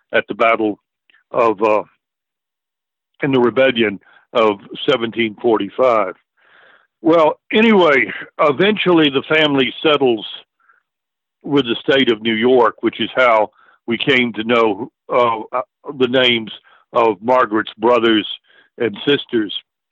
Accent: American